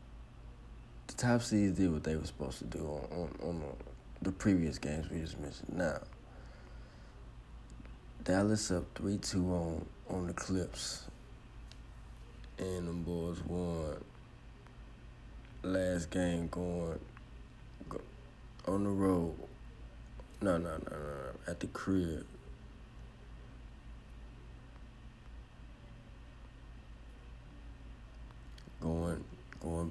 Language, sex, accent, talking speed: English, male, American, 95 wpm